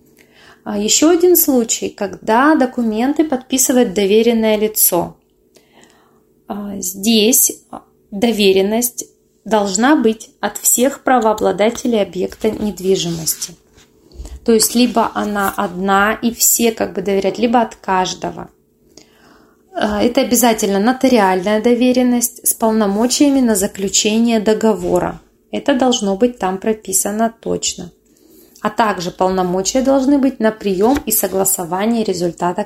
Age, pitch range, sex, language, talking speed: 20-39, 195-245 Hz, female, Russian, 100 wpm